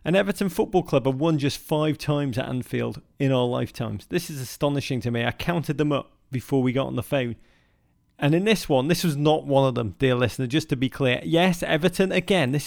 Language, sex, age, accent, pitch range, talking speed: English, male, 30-49, British, 130-175 Hz, 230 wpm